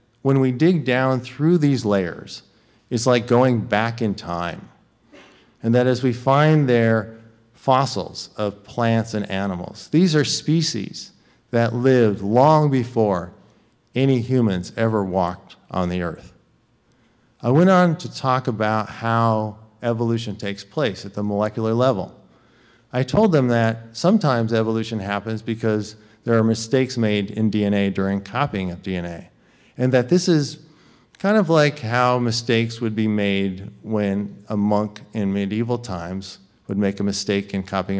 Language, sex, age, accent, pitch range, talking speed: English, male, 50-69, American, 105-130 Hz, 150 wpm